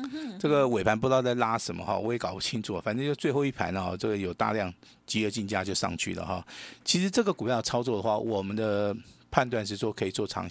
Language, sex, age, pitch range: Chinese, male, 50-69, 100-125 Hz